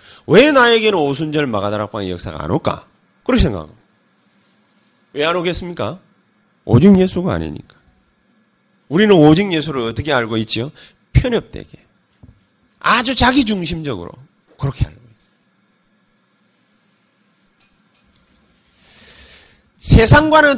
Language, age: Korean, 30-49